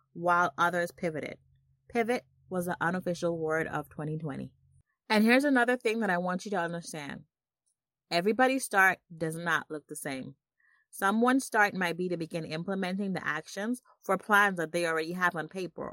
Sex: female